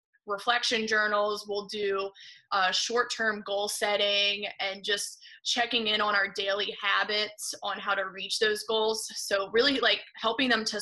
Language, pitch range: English, 200-220 Hz